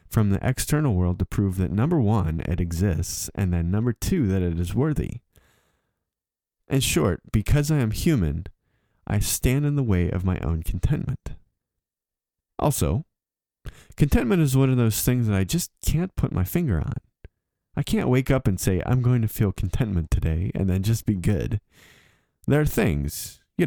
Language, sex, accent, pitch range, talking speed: English, male, American, 95-125 Hz, 175 wpm